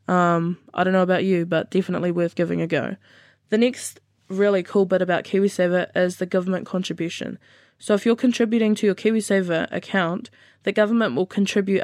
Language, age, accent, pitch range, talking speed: English, 10-29, Australian, 175-210 Hz, 175 wpm